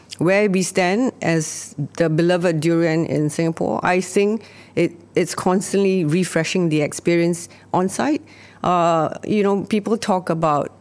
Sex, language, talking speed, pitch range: female, English, 140 wpm, 150-180 Hz